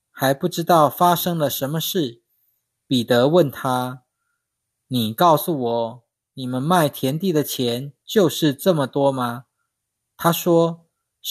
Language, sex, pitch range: Chinese, male, 120-170 Hz